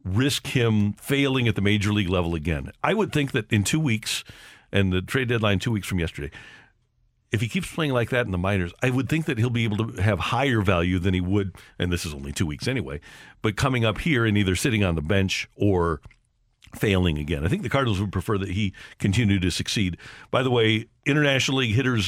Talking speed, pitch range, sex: 230 wpm, 100-130 Hz, male